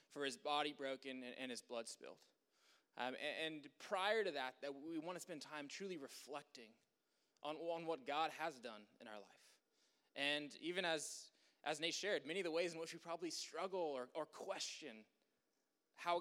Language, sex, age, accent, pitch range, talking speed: English, male, 20-39, American, 145-175 Hz, 180 wpm